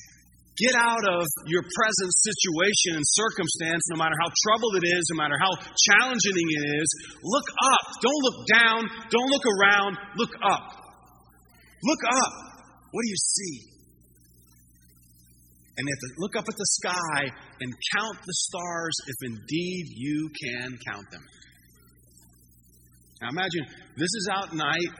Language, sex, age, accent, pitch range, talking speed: English, male, 40-59, American, 125-185 Hz, 140 wpm